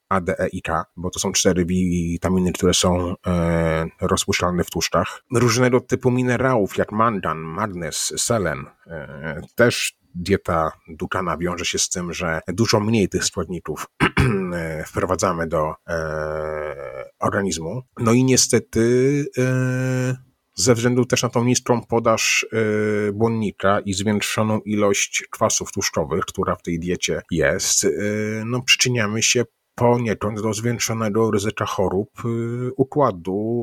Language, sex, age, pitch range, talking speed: Polish, male, 30-49, 90-120 Hz, 130 wpm